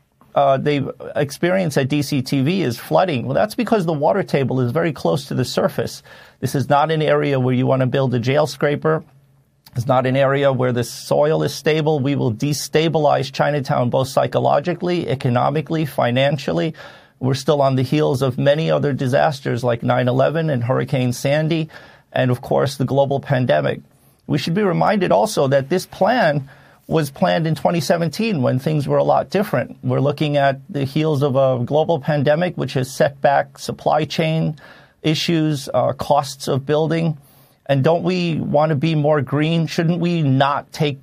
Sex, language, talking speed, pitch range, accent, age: male, English, 175 wpm, 130-155 Hz, American, 40-59